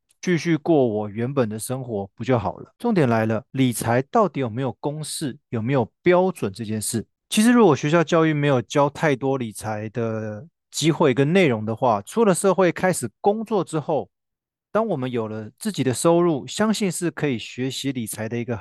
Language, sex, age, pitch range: Chinese, male, 20-39, 120-170 Hz